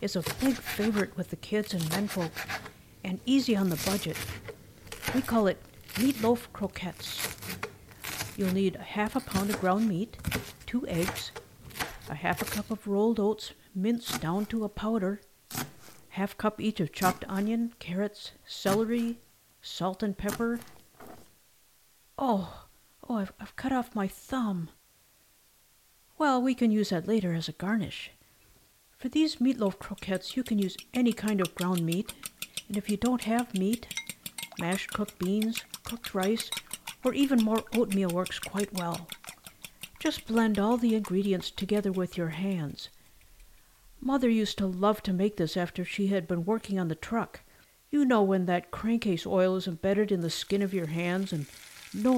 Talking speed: 160 wpm